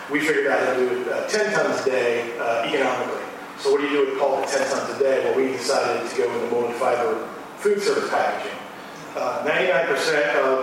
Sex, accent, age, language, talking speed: male, American, 40-59, English, 220 wpm